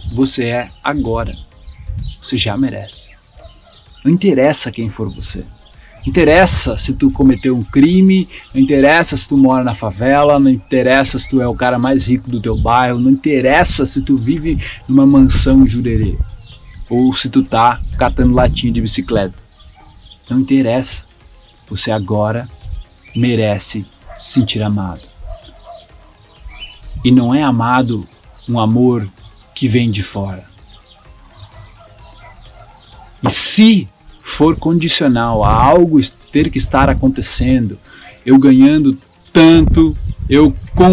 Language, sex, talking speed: Portuguese, male, 125 wpm